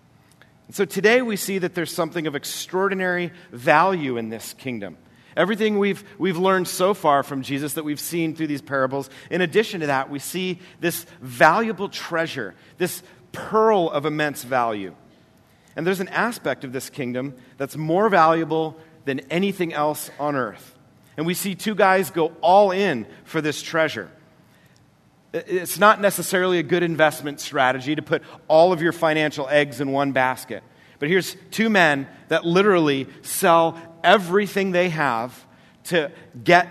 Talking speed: 155 wpm